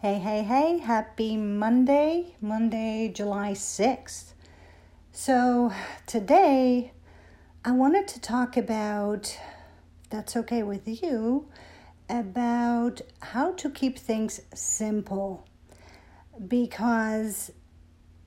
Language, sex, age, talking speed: English, female, 50-69, 85 wpm